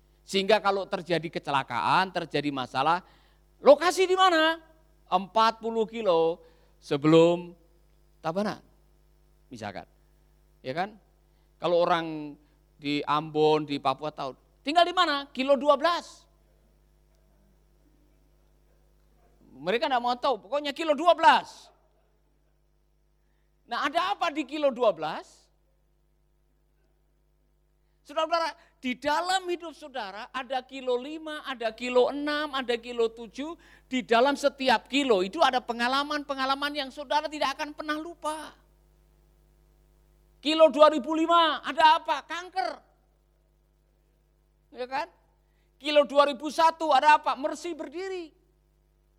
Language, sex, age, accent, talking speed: Indonesian, male, 50-69, native, 100 wpm